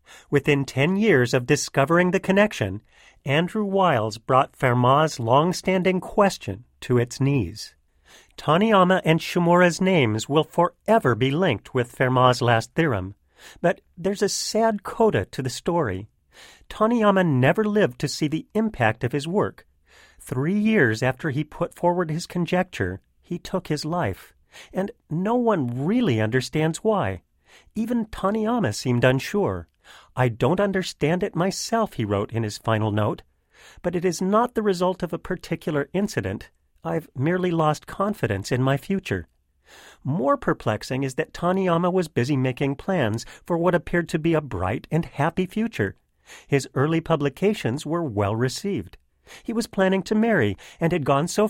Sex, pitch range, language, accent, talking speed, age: male, 125-185 Hz, English, American, 150 wpm, 40-59